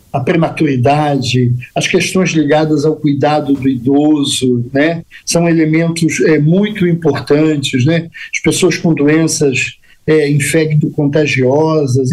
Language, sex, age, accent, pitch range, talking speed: Portuguese, male, 50-69, Brazilian, 145-185 Hz, 110 wpm